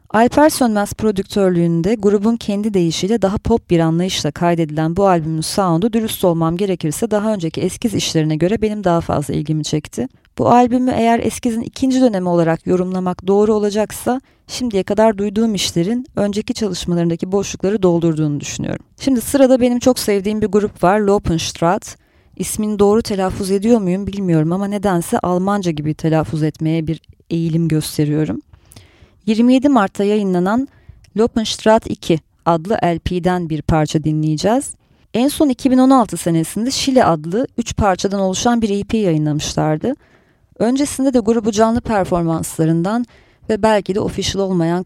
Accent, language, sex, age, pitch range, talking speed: native, Turkish, female, 30-49, 170-230 Hz, 135 wpm